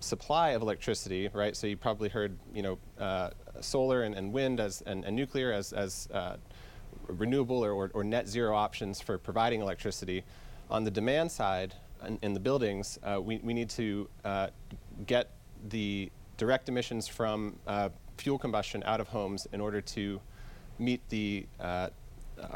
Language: English